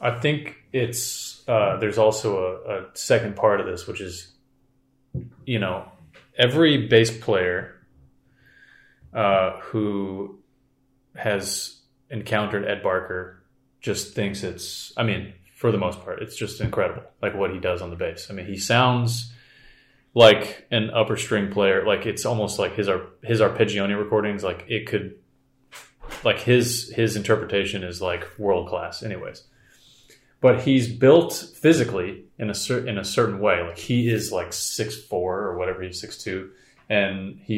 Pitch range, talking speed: 95-130 Hz, 155 wpm